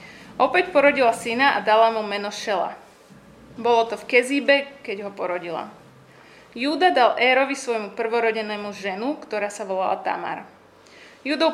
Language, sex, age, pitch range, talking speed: Slovak, female, 20-39, 215-275 Hz, 135 wpm